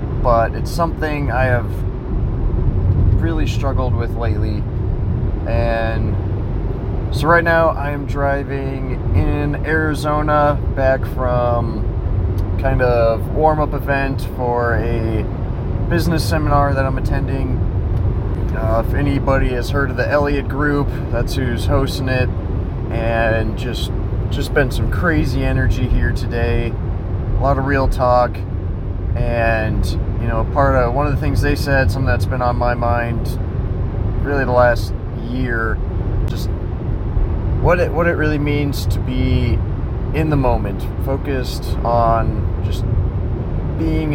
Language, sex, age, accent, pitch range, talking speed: English, male, 30-49, American, 95-125 Hz, 130 wpm